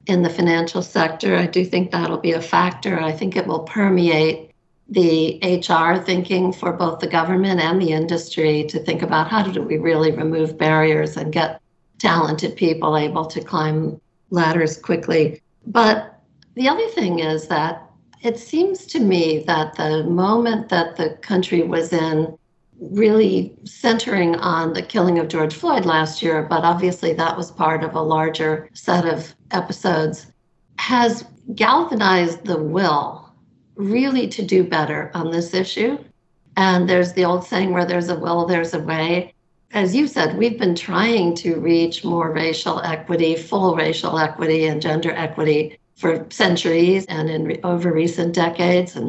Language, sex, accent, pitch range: English, female, American, 160-185 Hz